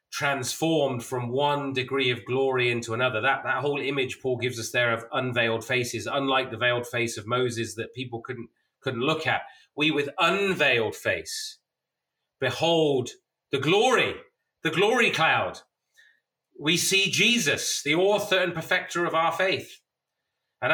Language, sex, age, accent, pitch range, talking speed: English, male, 30-49, British, 130-160 Hz, 150 wpm